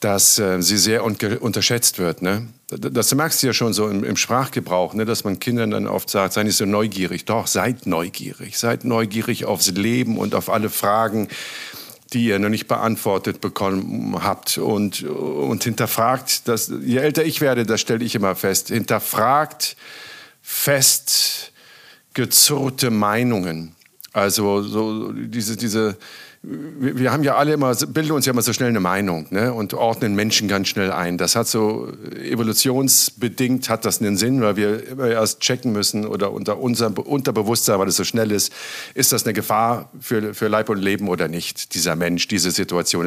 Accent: German